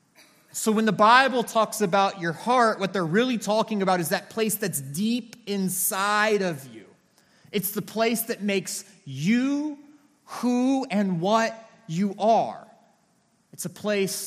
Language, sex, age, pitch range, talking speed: English, male, 30-49, 145-210 Hz, 145 wpm